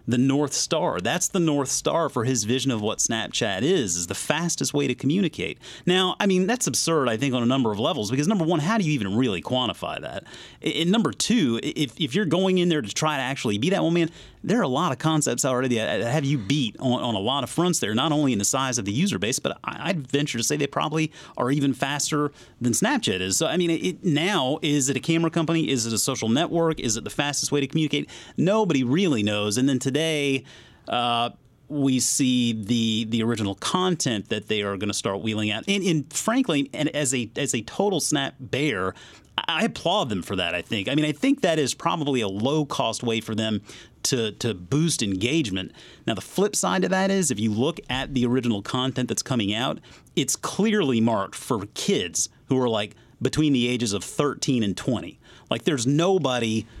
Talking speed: 225 wpm